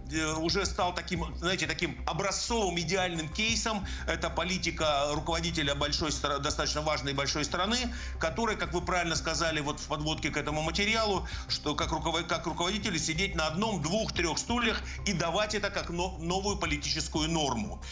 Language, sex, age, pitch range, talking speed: Russian, male, 50-69, 160-200 Hz, 145 wpm